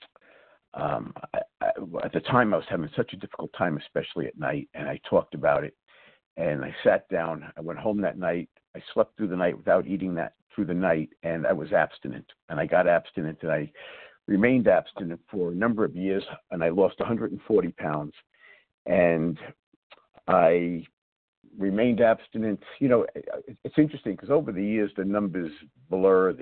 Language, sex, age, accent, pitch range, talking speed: English, male, 60-79, American, 95-110 Hz, 175 wpm